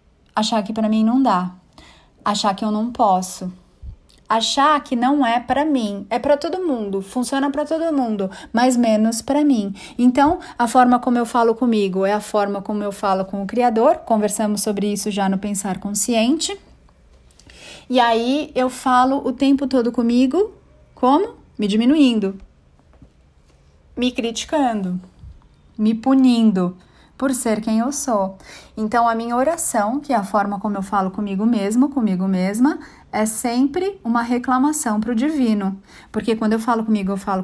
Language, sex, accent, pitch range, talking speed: Portuguese, female, Brazilian, 205-250 Hz, 160 wpm